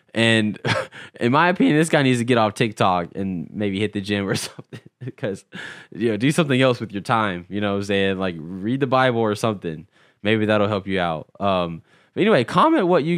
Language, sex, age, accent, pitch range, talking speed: English, male, 10-29, American, 95-125 Hz, 225 wpm